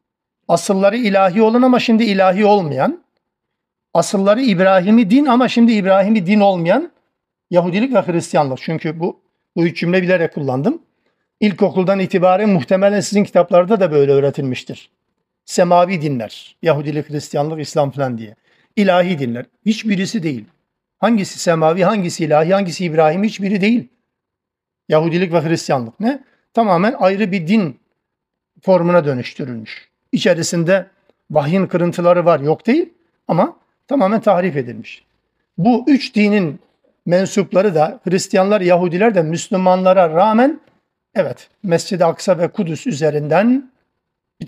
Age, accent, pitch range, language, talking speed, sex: 60-79, native, 160-205 Hz, Turkish, 120 wpm, male